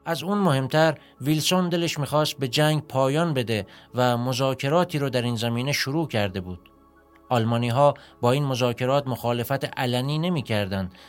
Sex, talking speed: male, 145 wpm